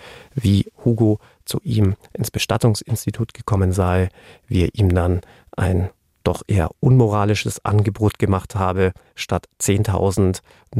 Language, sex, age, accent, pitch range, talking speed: German, male, 40-59, German, 100-120 Hz, 115 wpm